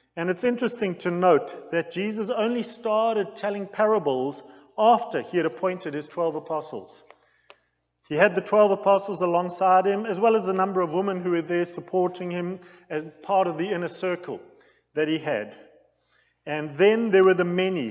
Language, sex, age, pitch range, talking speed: English, male, 40-59, 155-200 Hz, 175 wpm